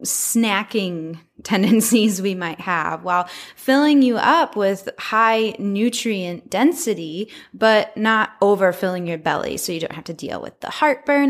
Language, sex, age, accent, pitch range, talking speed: English, female, 20-39, American, 185-245 Hz, 145 wpm